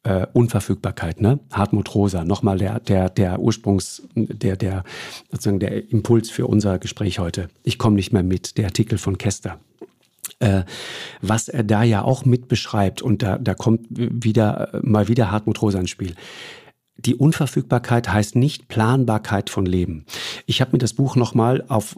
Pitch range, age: 100-125 Hz, 50-69